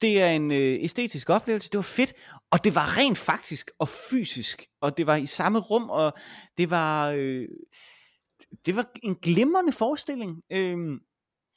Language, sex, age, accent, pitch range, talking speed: Danish, male, 30-49, native, 145-210 Hz, 160 wpm